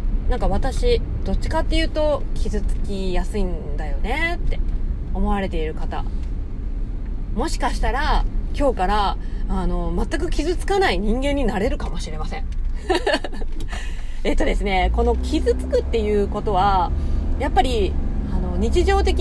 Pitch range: 70-105 Hz